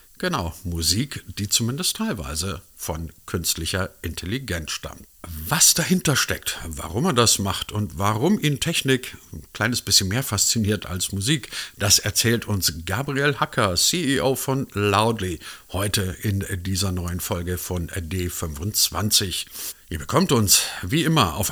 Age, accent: 50-69, German